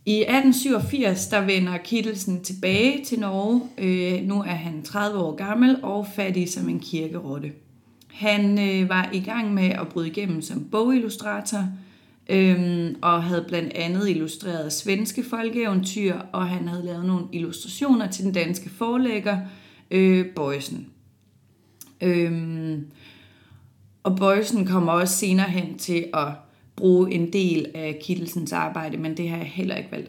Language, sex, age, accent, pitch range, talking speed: Danish, female, 30-49, native, 160-200 Hz, 145 wpm